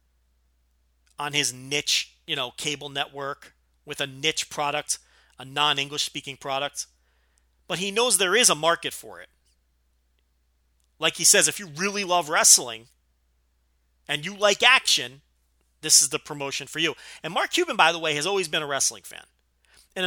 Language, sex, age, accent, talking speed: English, male, 40-59, American, 165 wpm